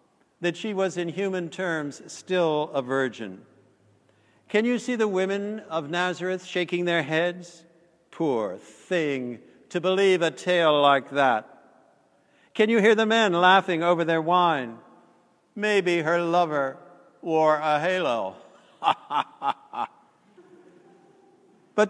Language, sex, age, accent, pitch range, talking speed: English, male, 60-79, American, 155-190 Hz, 120 wpm